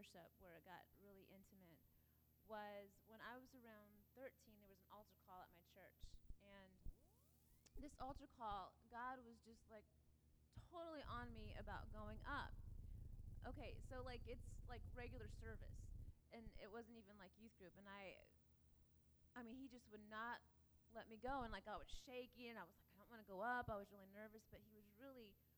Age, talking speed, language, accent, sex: 30-49, 190 wpm, English, American, female